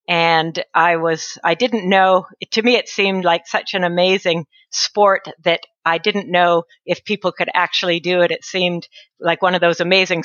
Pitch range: 175-205 Hz